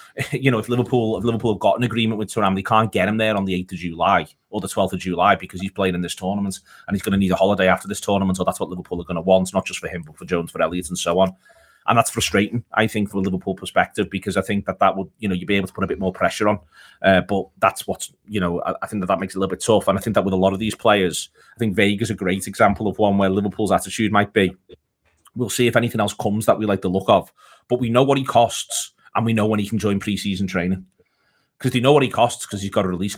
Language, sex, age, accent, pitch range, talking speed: English, male, 30-49, British, 95-115 Hz, 305 wpm